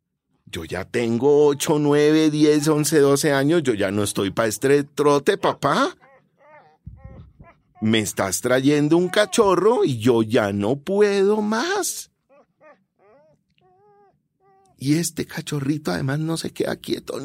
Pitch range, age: 120-195 Hz, 40-59